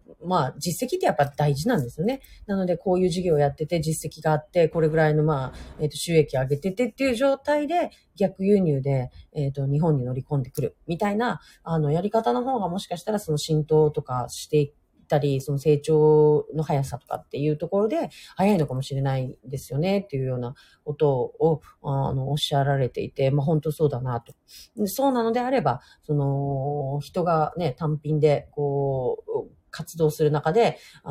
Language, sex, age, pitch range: Japanese, female, 40-59, 140-190 Hz